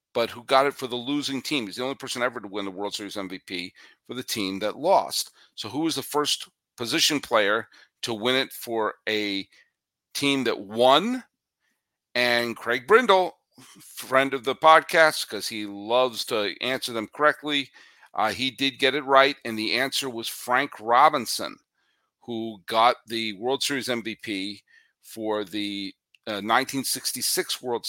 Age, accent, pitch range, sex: 50-69, American, 110-140 Hz, male